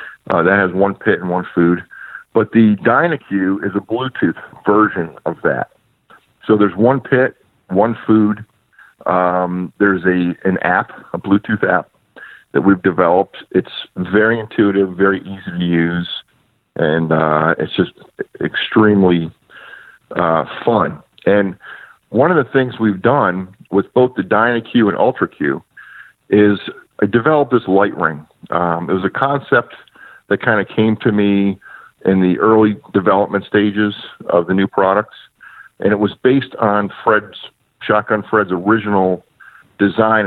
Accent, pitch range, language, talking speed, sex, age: American, 95-110 Hz, English, 145 wpm, male, 50-69